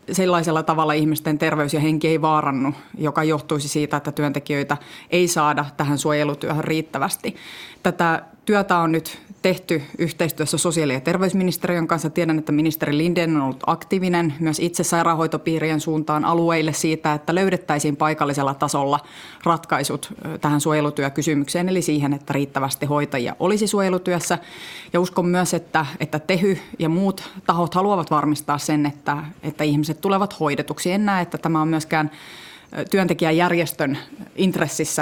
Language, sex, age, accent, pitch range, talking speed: Finnish, female, 30-49, native, 150-175 Hz, 135 wpm